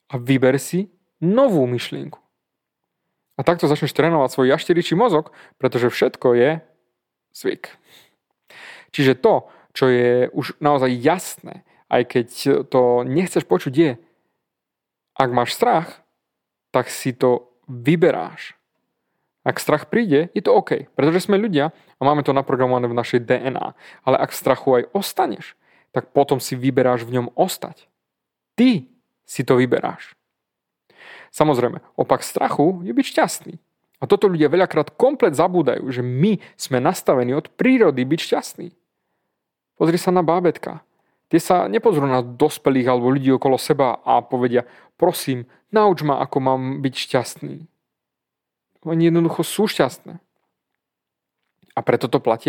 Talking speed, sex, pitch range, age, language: 135 wpm, male, 130-175 Hz, 30-49, Slovak